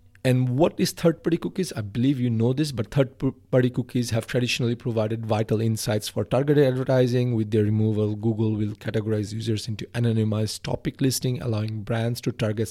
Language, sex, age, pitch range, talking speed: English, male, 40-59, 105-130 Hz, 170 wpm